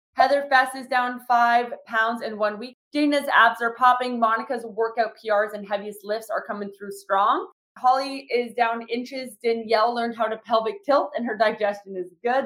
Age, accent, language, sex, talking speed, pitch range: 20-39, American, English, female, 185 wpm, 210-255 Hz